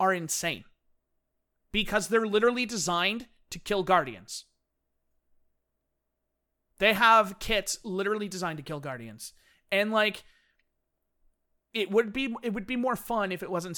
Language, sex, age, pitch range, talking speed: English, male, 30-49, 135-220 Hz, 130 wpm